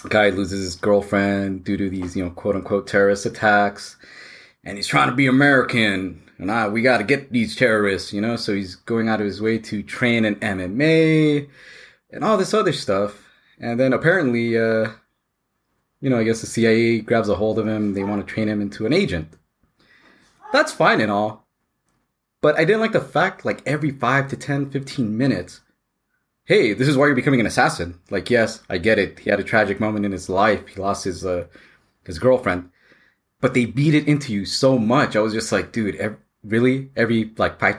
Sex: male